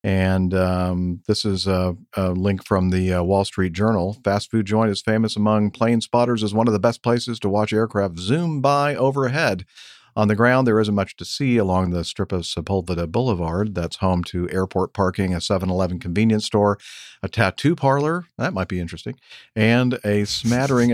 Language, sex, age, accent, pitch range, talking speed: English, male, 50-69, American, 90-110 Hz, 190 wpm